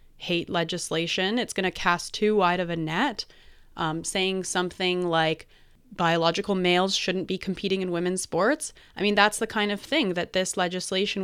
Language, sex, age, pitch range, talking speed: English, female, 20-39, 170-200 Hz, 175 wpm